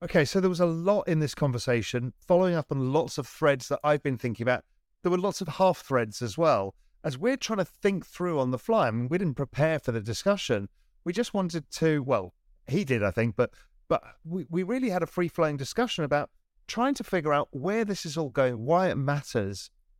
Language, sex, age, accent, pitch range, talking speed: English, male, 40-59, British, 120-175 Hz, 230 wpm